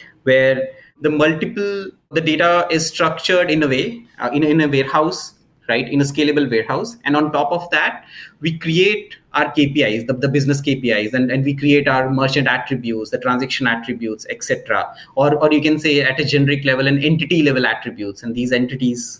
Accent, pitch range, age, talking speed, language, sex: Indian, 130-170 Hz, 20-39, 190 wpm, English, male